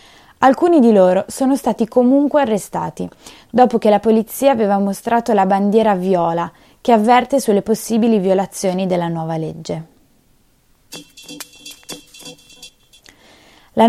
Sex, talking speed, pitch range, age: female, 110 wpm, 180-245 Hz, 20-39